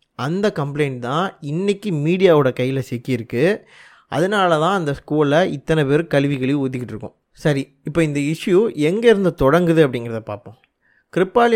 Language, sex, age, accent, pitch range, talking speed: Tamil, male, 20-39, native, 135-180 Hz, 125 wpm